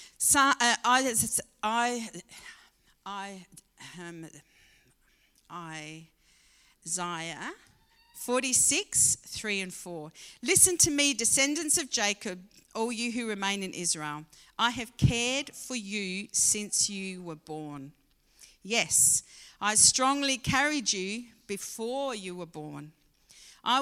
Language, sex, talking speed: English, female, 105 wpm